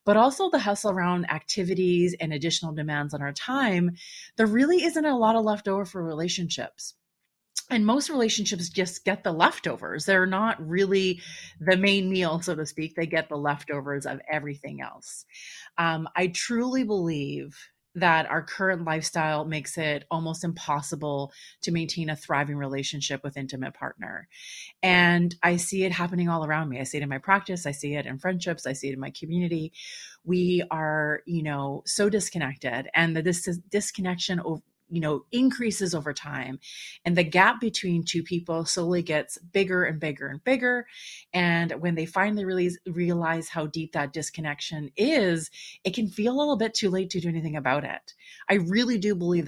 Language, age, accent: English, 30-49, American